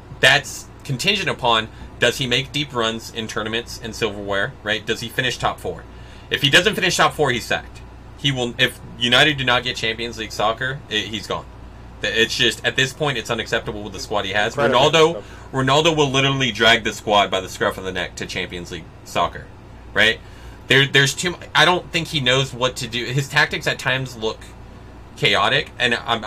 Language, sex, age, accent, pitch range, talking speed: English, male, 30-49, American, 100-125 Hz, 205 wpm